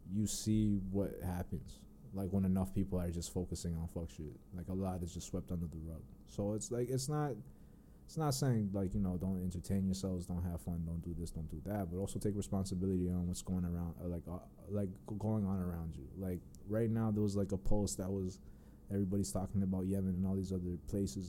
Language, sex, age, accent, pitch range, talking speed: English, male, 20-39, American, 90-110 Hz, 225 wpm